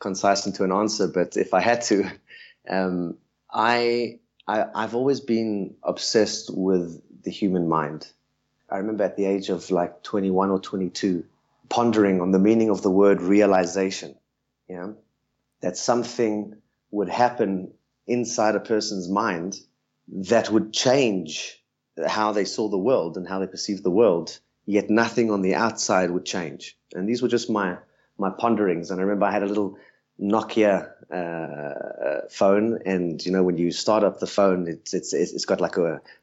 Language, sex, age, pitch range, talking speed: English, male, 30-49, 95-110 Hz, 170 wpm